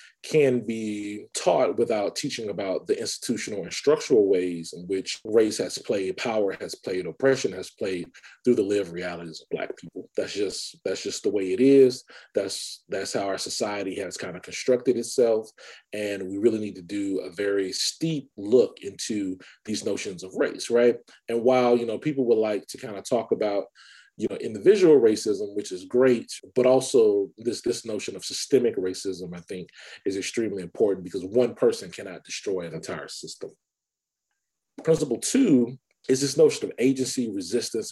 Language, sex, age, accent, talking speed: English, male, 30-49, American, 175 wpm